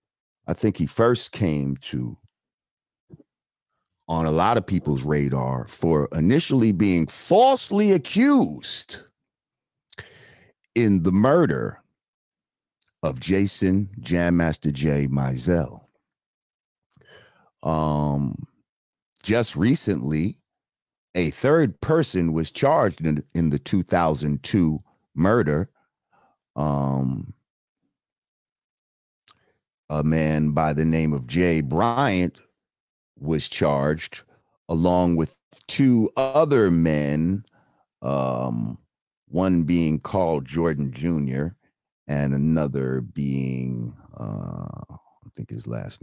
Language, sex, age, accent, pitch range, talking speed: English, male, 50-69, American, 70-90 Hz, 90 wpm